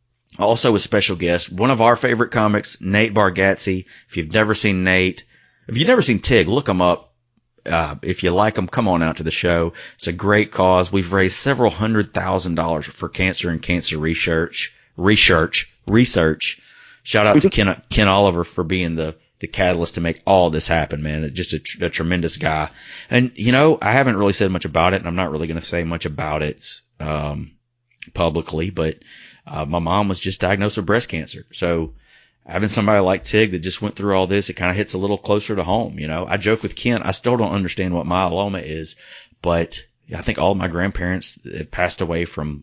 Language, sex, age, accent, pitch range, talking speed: English, male, 30-49, American, 85-105 Hz, 210 wpm